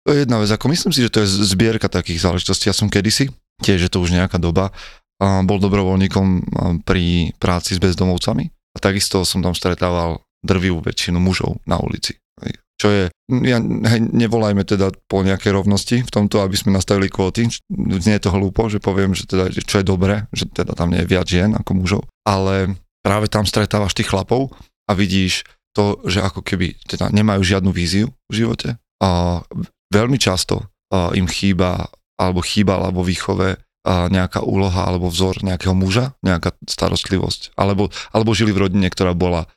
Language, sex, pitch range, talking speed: Slovak, male, 90-105 Hz, 175 wpm